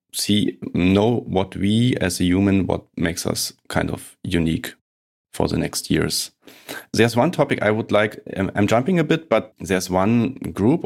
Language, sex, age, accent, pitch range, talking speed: English, male, 30-49, German, 90-105 Hz, 175 wpm